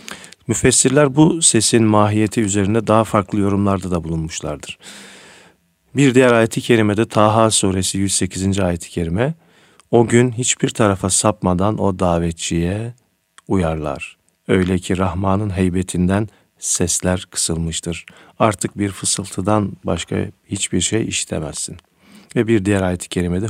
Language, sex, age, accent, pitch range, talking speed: Turkish, male, 50-69, native, 90-115 Hz, 115 wpm